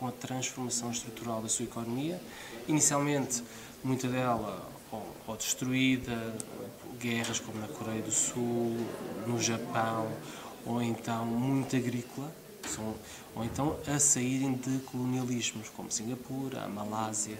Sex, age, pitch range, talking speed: male, 20-39, 115-130 Hz, 115 wpm